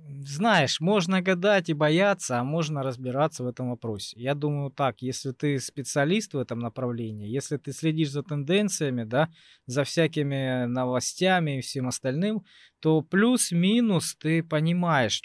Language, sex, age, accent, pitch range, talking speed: Russian, male, 20-39, native, 125-165 Hz, 140 wpm